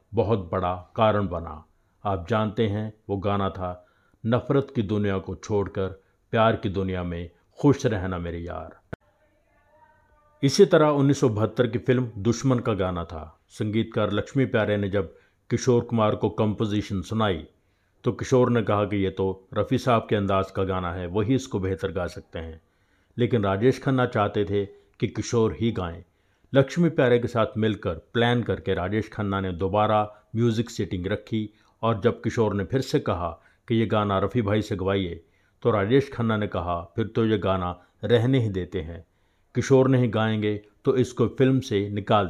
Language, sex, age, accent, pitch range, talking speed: Hindi, male, 50-69, native, 95-120 Hz, 170 wpm